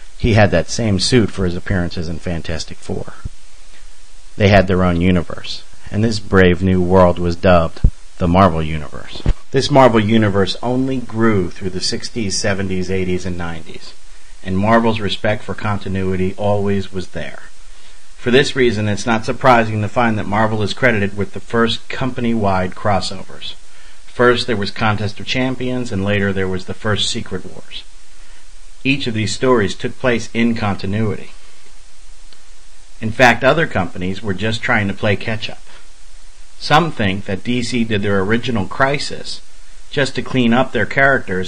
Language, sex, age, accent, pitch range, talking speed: English, male, 50-69, American, 95-120 Hz, 160 wpm